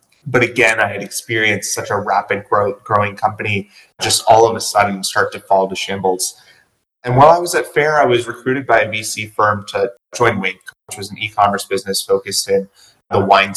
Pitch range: 95-110 Hz